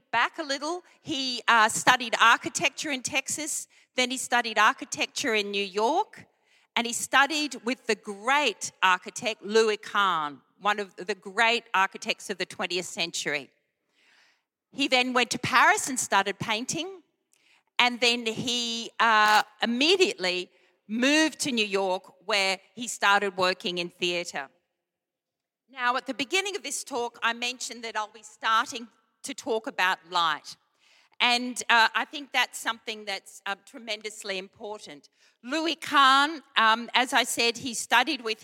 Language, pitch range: English, 205-260 Hz